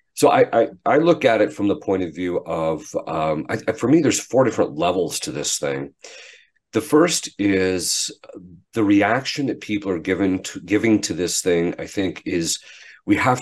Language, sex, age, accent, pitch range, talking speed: English, male, 40-59, American, 90-125 Hz, 190 wpm